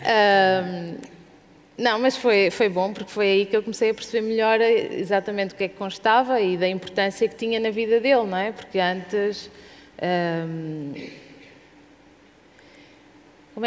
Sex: female